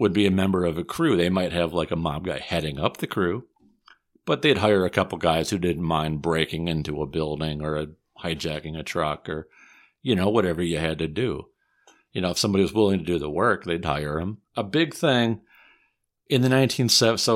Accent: American